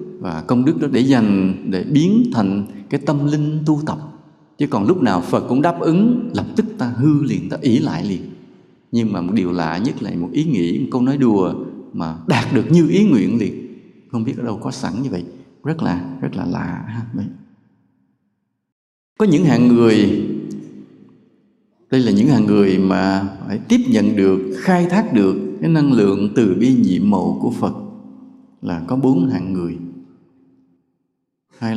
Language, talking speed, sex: English, 185 wpm, male